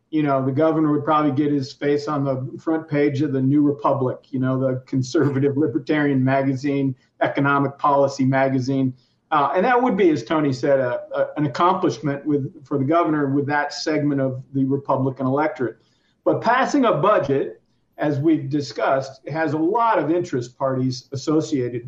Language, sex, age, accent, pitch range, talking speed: English, male, 50-69, American, 140-160 Hz, 175 wpm